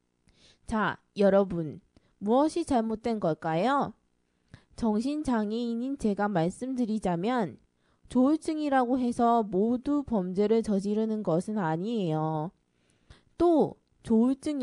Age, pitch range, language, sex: 20-39, 180-260 Hz, Korean, female